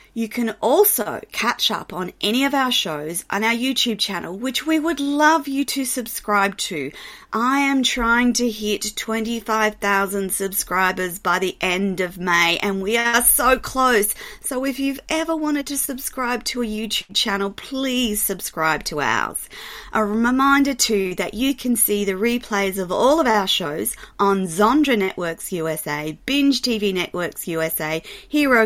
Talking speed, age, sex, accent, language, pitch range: 160 wpm, 30-49, female, Australian, English, 180-240 Hz